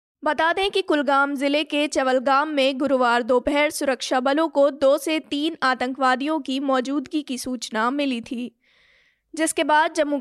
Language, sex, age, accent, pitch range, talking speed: Hindi, female, 20-39, native, 260-305 Hz, 155 wpm